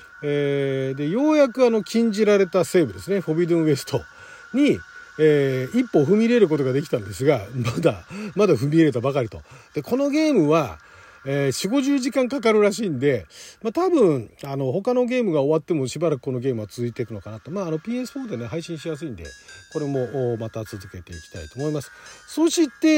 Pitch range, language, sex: 125-195 Hz, Japanese, male